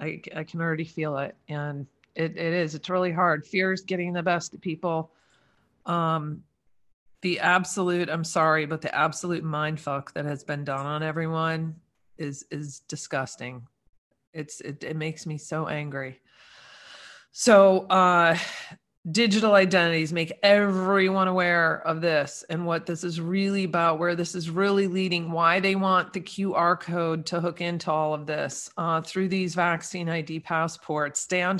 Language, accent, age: English, American, 40-59